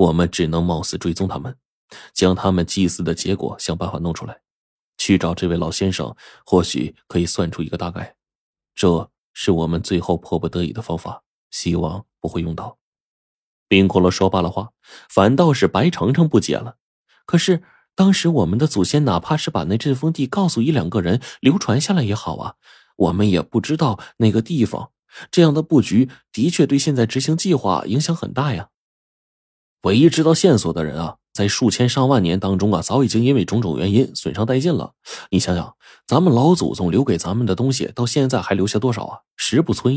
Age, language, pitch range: 20-39, Chinese, 85-130 Hz